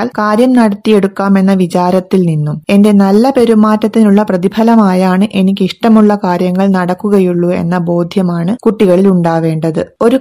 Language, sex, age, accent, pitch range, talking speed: Malayalam, female, 20-39, native, 180-210 Hz, 105 wpm